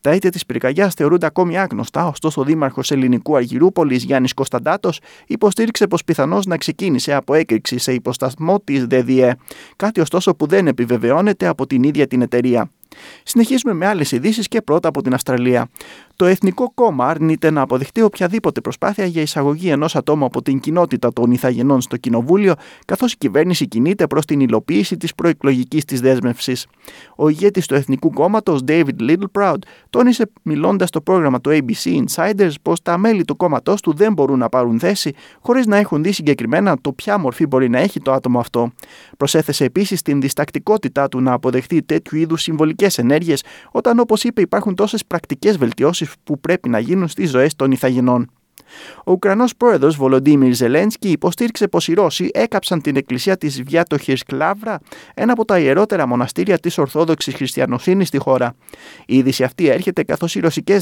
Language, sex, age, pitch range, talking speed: Greek, male, 30-49, 135-190 Hz, 170 wpm